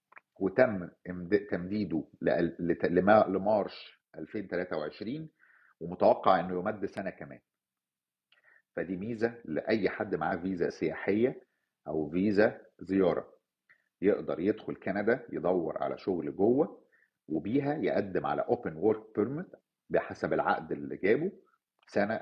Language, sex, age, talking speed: Arabic, male, 50-69, 100 wpm